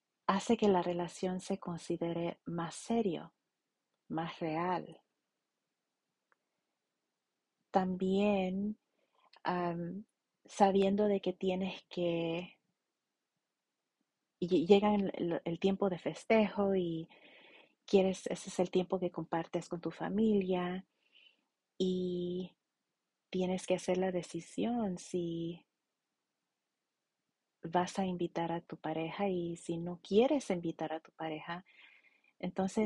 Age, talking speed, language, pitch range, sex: 30-49, 100 wpm, English, 170-200 Hz, female